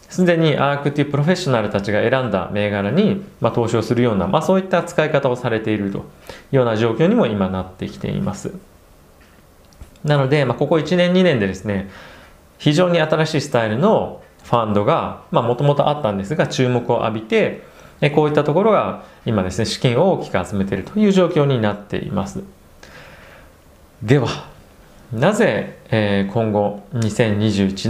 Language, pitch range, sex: Japanese, 100-155 Hz, male